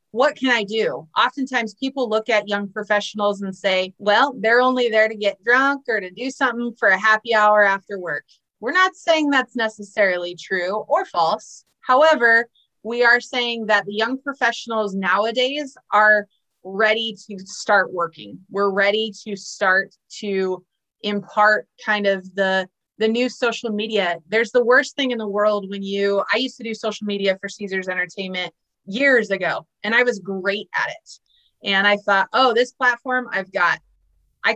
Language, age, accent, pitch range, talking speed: English, 30-49, American, 195-240 Hz, 170 wpm